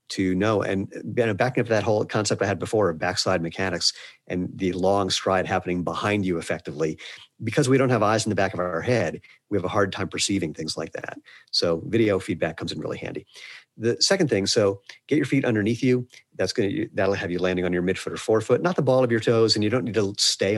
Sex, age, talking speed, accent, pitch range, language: male, 40-59, 235 wpm, American, 95-120 Hz, English